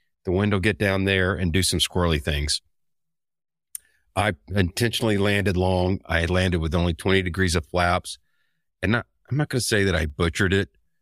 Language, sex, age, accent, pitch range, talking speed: English, male, 40-59, American, 85-105 Hz, 185 wpm